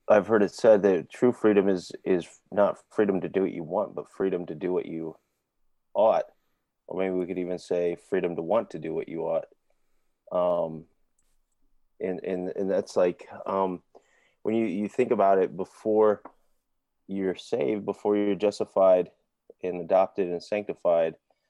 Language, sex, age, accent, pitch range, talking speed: English, male, 30-49, American, 90-100 Hz, 165 wpm